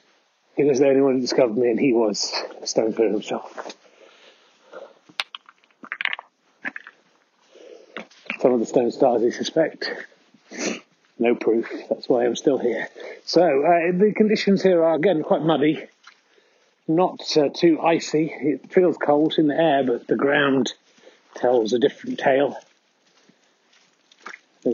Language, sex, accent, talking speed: English, male, British, 135 wpm